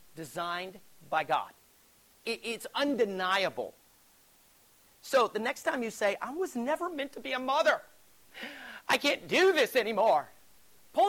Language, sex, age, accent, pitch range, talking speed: English, male, 40-59, American, 195-290 Hz, 135 wpm